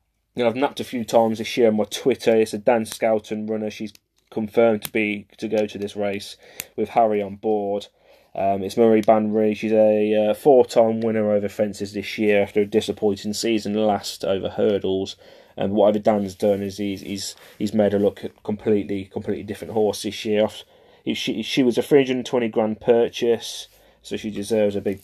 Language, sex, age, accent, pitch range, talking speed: English, male, 30-49, British, 100-110 Hz, 190 wpm